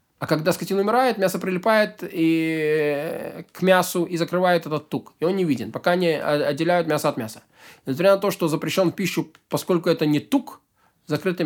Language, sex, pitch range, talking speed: Russian, male, 160-195 Hz, 185 wpm